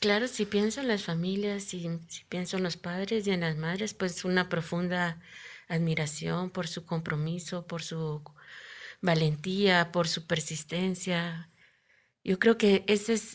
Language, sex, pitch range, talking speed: Spanish, female, 165-190 Hz, 155 wpm